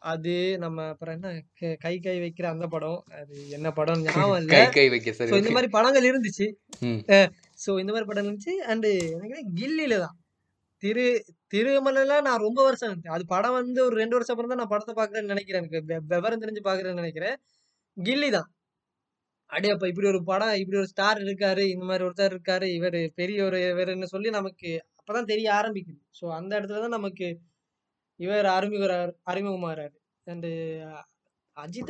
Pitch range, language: 170-225 Hz, Tamil